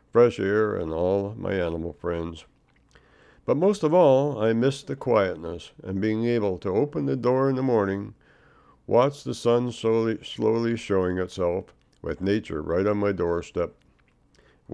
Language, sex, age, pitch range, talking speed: English, male, 60-79, 90-115 Hz, 160 wpm